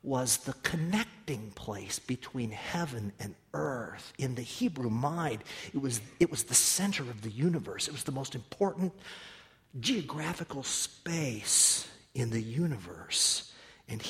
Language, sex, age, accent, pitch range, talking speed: English, male, 50-69, American, 120-195 Hz, 135 wpm